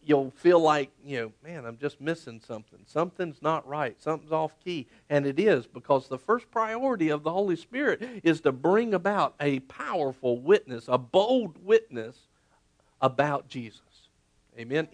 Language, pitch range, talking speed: English, 125-175 Hz, 160 wpm